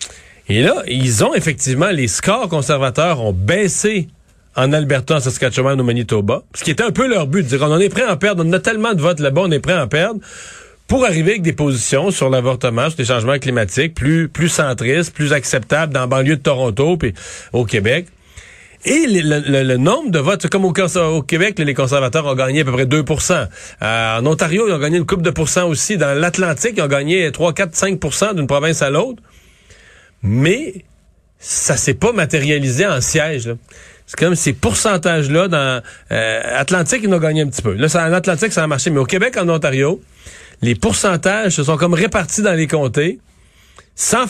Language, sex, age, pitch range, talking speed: French, male, 40-59, 130-180 Hz, 205 wpm